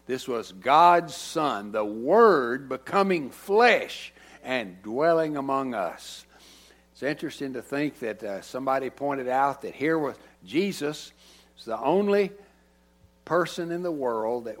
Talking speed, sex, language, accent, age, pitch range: 130 wpm, male, English, American, 60-79, 95-145 Hz